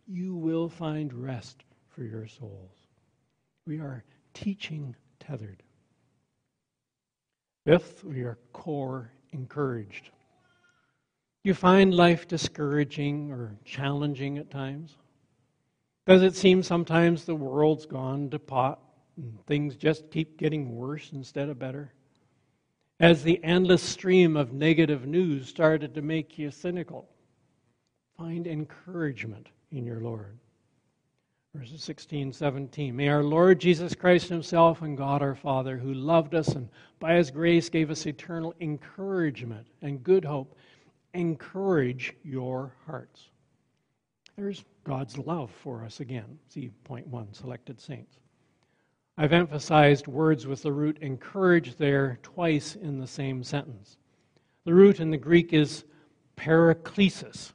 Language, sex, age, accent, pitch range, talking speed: English, male, 70-89, American, 130-165 Hz, 125 wpm